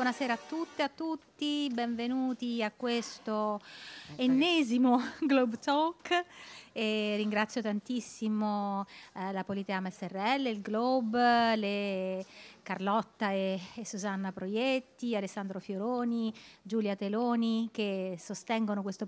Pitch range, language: 185-235 Hz, Italian